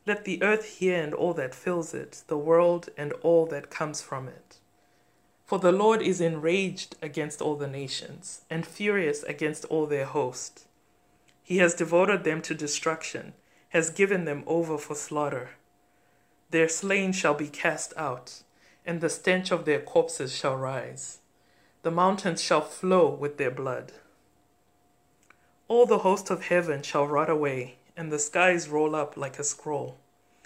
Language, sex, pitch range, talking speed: English, female, 150-180 Hz, 160 wpm